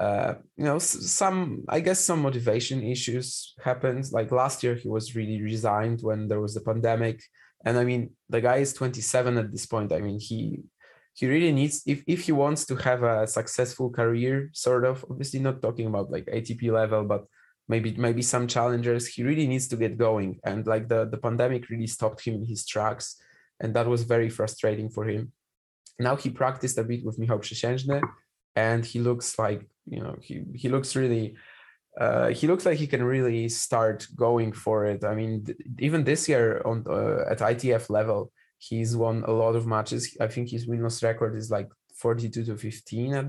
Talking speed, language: 195 wpm, English